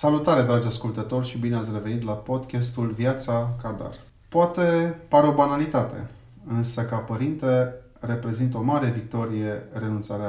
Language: Romanian